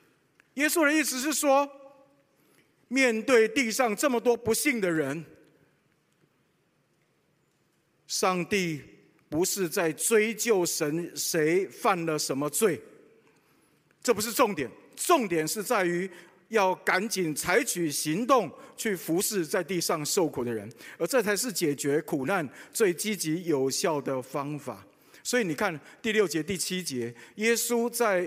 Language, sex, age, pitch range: Chinese, male, 50-69, 155-220 Hz